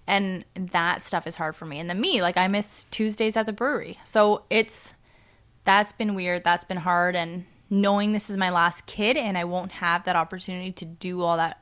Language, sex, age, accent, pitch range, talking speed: English, female, 20-39, American, 170-205 Hz, 215 wpm